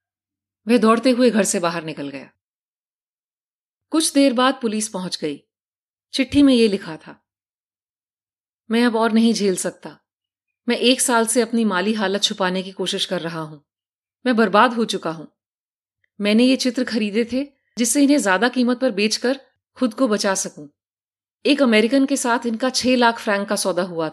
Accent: native